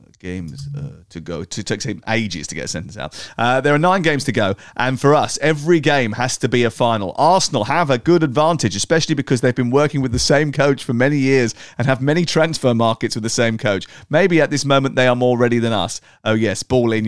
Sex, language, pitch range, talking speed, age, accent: male, English, 110-140 Hz, 240 wpm, 40-59, British